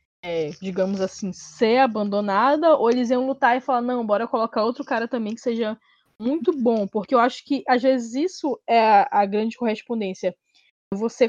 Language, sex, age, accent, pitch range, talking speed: Portuguese, female, 10-29, Brazilian, 215-265 Hz, 175 wpm